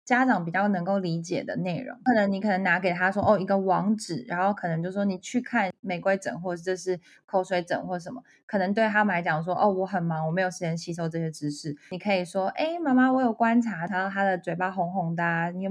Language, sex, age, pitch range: Chinese, female, 20-39, 180-240 Hz